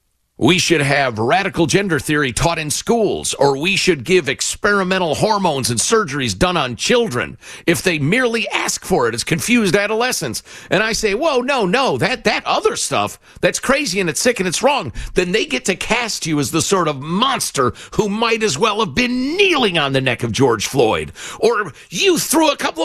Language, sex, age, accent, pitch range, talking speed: English, male, 50-69, American, 145-225 Hz, 200 wpm